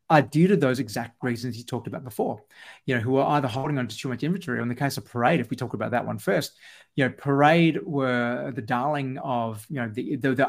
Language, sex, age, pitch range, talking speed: English, male, 30-49, 120-145 Hz, 265 wpm